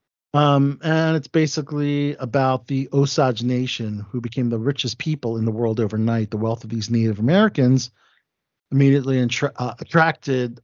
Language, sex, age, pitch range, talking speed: English, male, 50-69, 110-140 Hz, 145 wpm